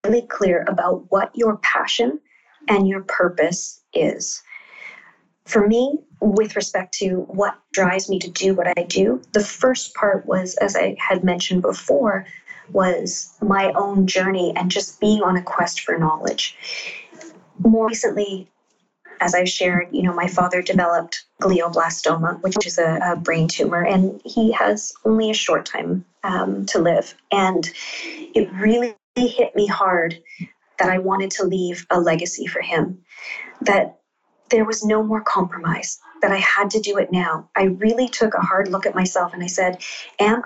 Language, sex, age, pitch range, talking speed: English, female, 30-49, 180-215 Hz, 165 wpm